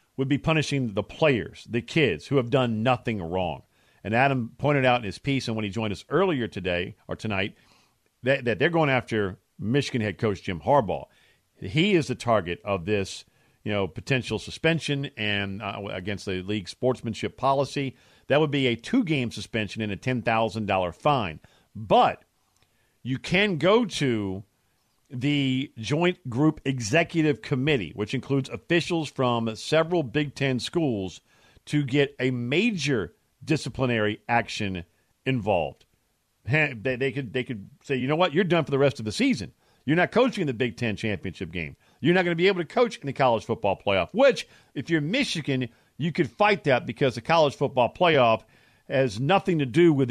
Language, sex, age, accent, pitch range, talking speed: English, male, 50-69, American, 110-145 Hz, 175 wpm